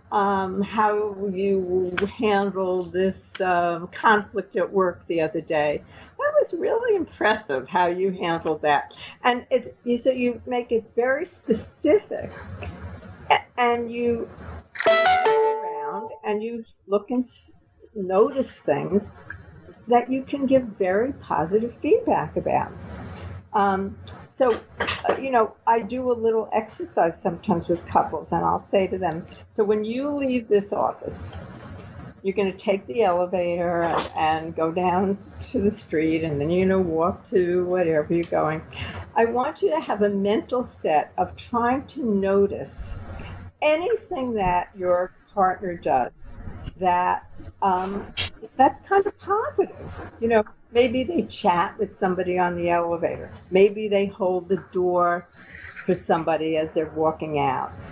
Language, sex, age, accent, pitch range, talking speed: English, female, 60-79, American, 180-240 Hz, 140 wpm